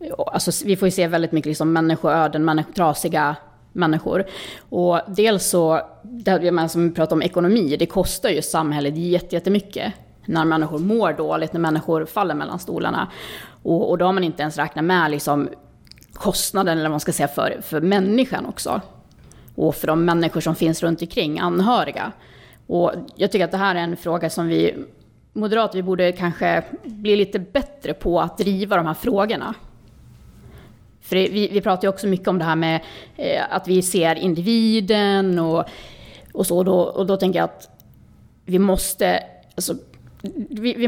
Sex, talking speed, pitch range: female, 160 wpm, 160-195 Hz